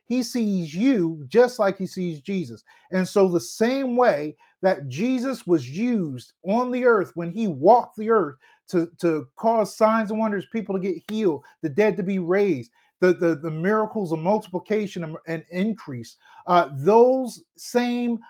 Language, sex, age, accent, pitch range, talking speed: English, male, 40-59, American, 175-230 Hz, 165 wpm